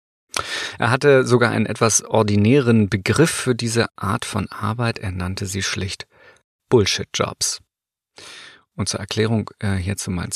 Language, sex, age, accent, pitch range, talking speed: German, male, 40-59, German, 100-130 Hz, 145 wpm